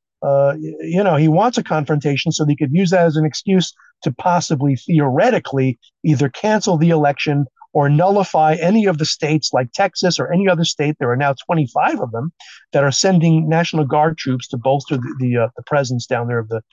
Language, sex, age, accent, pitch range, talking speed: English, male, 50-69, American, 130-165 Hz, 205 wpm